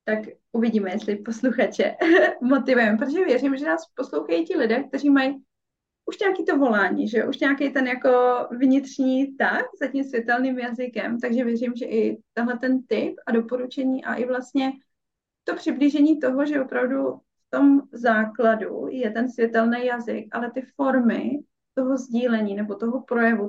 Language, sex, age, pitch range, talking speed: Czech, female, 30-49, 225-260 Hz, 155 wpm